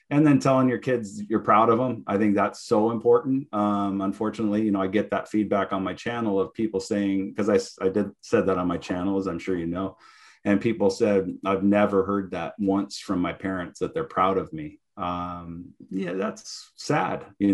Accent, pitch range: American, 100-120 Hz